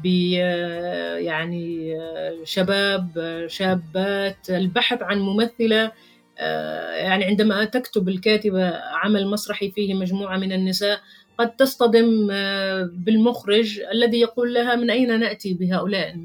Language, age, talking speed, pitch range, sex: Arabic, 30-49, 100 wpm, 175-225 Hz, female